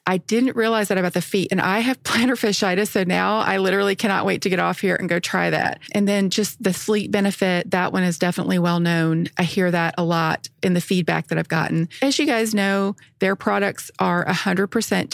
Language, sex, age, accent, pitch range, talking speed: English, female, 40-59, American, 175-205 Hz, 225 wpm